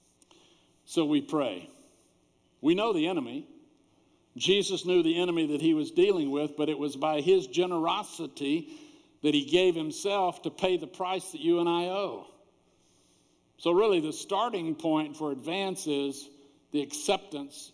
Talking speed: 150 wpm